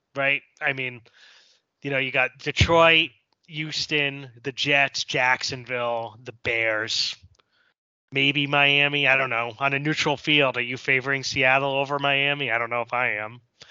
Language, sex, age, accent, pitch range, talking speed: English, male, 20-39, American, 130-165 Hz, 155 wpm